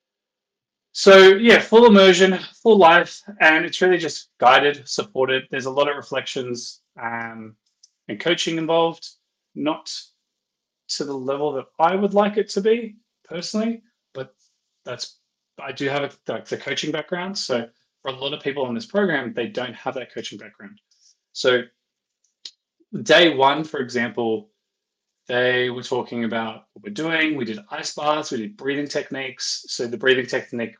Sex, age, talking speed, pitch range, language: male, 20-39, 160 wpm, 120-190 Hz, English